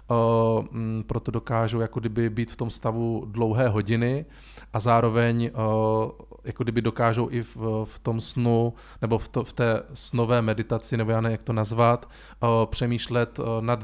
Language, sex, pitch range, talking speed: Czech, male, 115-120 Hz, 120 wpm